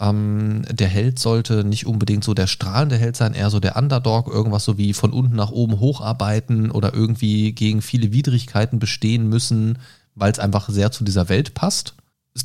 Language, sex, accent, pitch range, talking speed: German, male, German, 95-115 Hz, 190 wpm